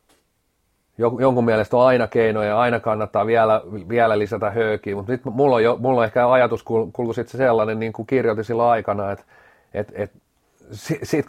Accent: native